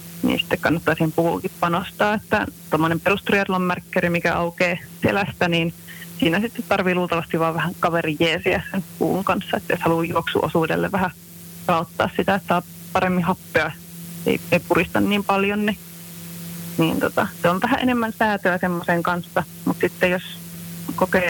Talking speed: 150 wpm